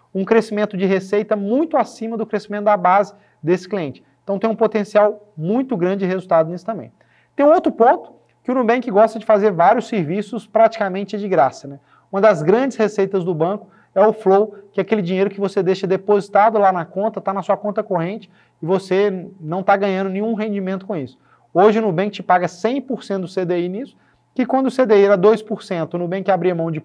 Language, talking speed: Portuguese, 205 wpm